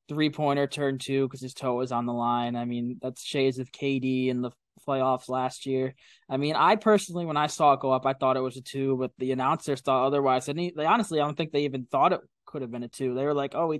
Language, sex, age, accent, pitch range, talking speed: English, male, 20-39, American, 130-155 Hz, 280 wpm